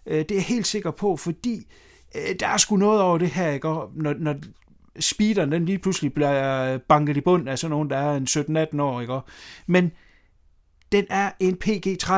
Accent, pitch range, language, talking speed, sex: native, 150-195 Hz, Danish, 175 wpm, male